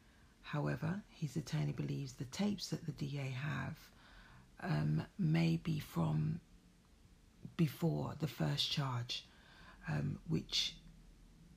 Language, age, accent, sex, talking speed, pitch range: English, 40-59, British, female, 105 wpm, 135-170 Hz